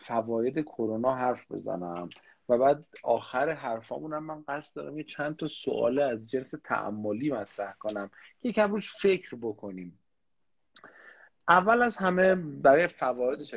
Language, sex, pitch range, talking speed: Persian, male, 110-165 Hz, 135 wpm